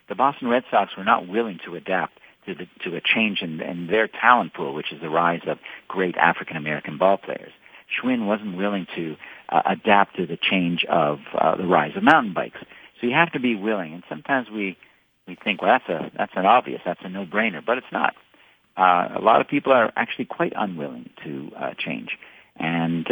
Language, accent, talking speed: English, American, 205 wpm